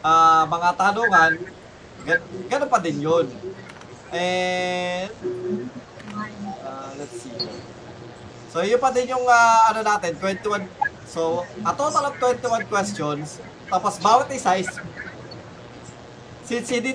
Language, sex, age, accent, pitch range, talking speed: Filipino, male, 20-39, native, 175-235 Hz, 105 wpm